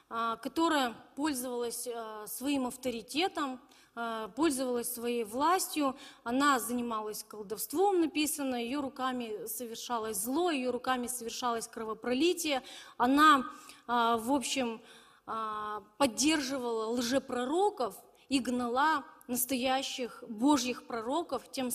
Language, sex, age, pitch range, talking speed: Russian, female, 30-49, 235-290 Hz, 85 wpm